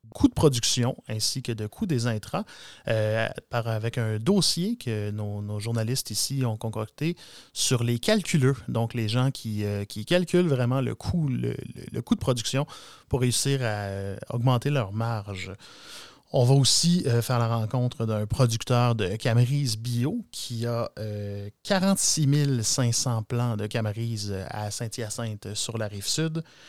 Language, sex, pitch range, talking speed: French, male, 110-130 Hz, 155 wpm